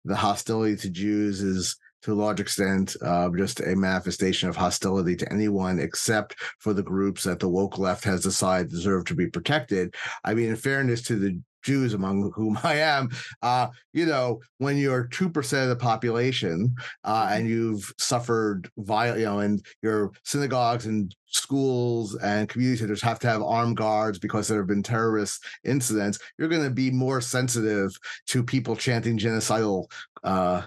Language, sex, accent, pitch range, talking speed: English, male, American, 100-125 Hz, 170 wpm